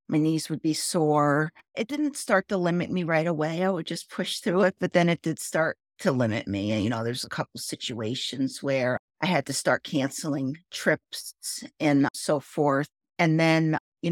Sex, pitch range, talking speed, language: female, 145-170 Hz, 205 wpm, English